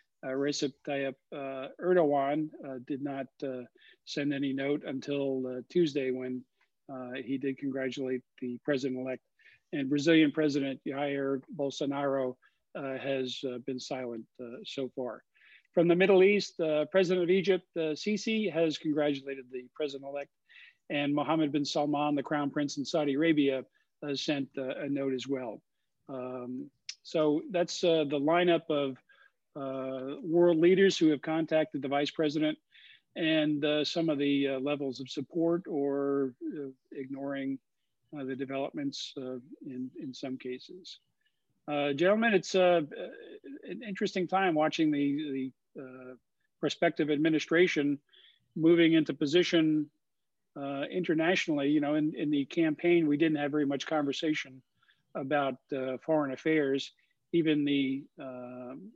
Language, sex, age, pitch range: English, male, 50-69, 135-165 Hz